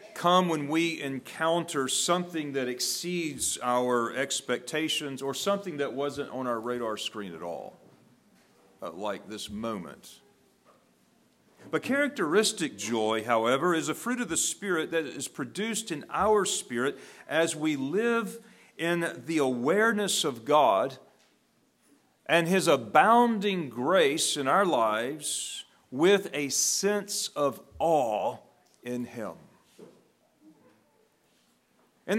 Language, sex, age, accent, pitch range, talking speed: English, male, 40-59, American, 125-195 Hz, 115 wpm